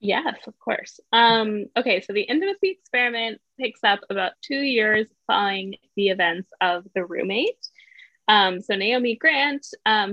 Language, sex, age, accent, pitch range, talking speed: English, female, 10-29, American, 185-245 Hz, 150 wpm